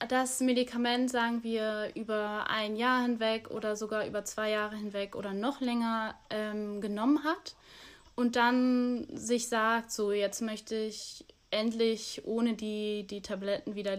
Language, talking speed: German, 145 wpm